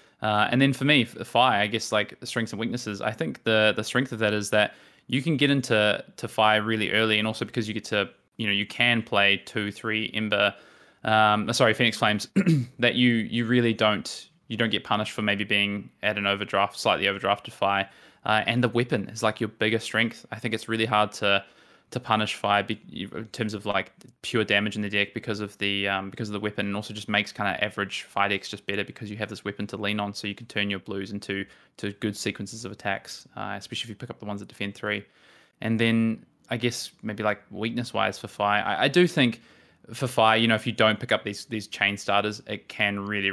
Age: 20-39